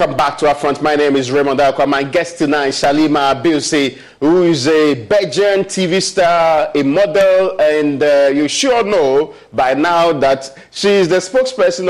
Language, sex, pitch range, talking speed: English, male, 145-220 Hz, 180 wpm